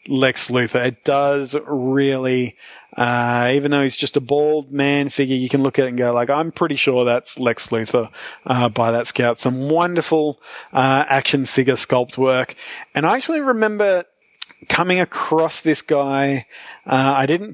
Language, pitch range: English, 125-145 Hz